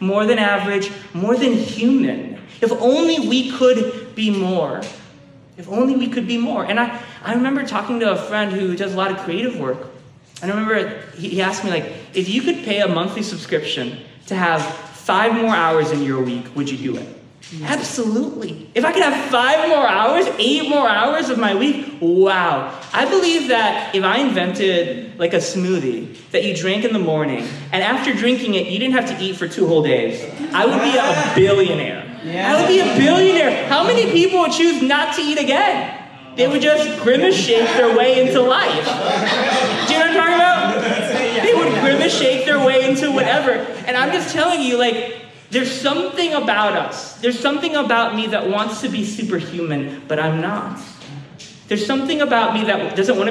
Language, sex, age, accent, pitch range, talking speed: English, male, 20-39, American, 190-260 Hz, 195 wpm